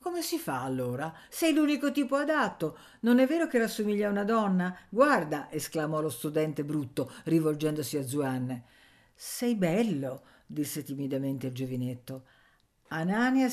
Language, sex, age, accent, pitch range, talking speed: Italian, female, 50-69, native, 145-230 Hz, 140 wpm